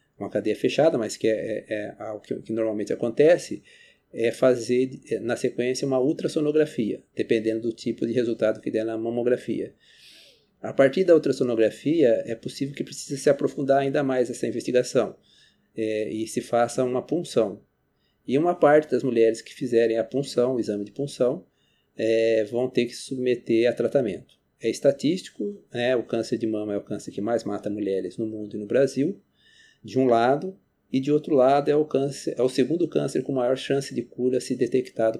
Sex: male